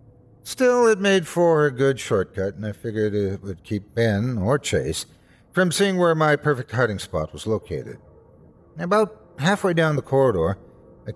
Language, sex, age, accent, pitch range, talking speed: English, male, 60-79, American, 110-160 Hz, 165 wpm